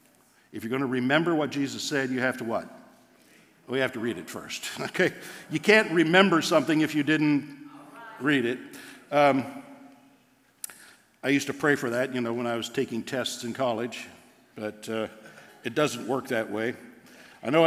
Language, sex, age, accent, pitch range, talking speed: English, male, 60-79, American, 125-150 Hz, 180 wpm